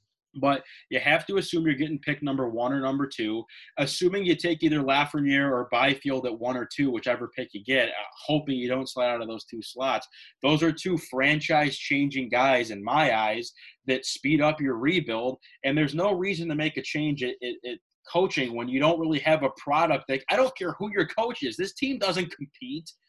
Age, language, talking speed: 20-39, English, 210 wpm